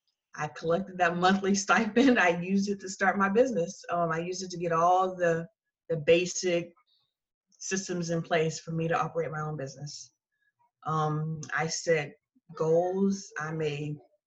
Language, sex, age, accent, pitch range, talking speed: English, female, 20-39, American, 165-200 Hz, 160 wpm